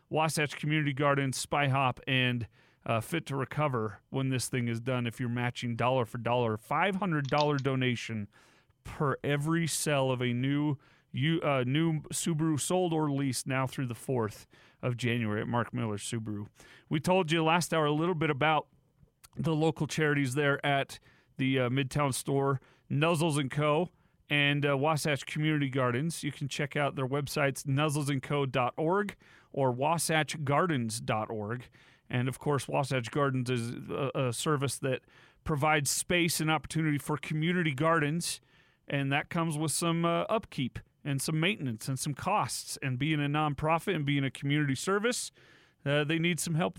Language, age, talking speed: English, 40-59, 160 wpm